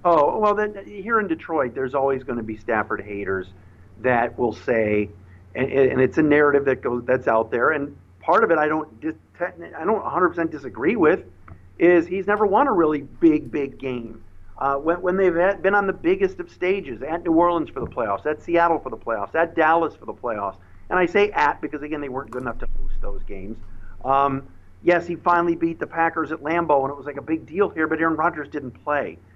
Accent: American